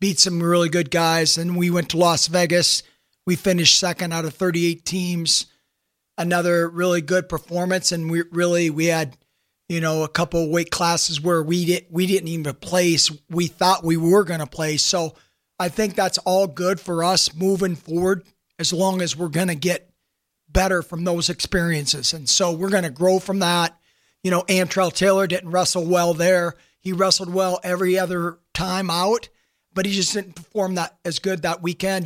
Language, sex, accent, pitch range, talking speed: English, male, American, 165-190 Hz, 185 wpm